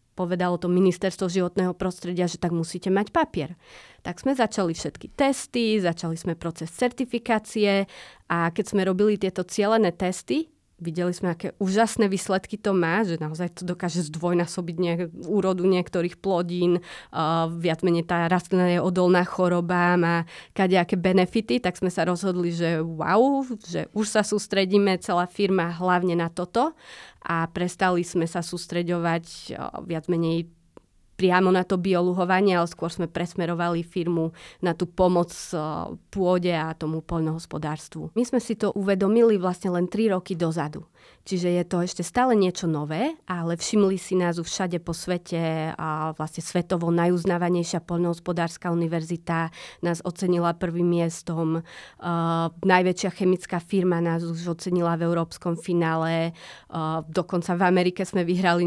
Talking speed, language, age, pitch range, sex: 145 wpm, Slovak, 30-49, 170-190 Hz, female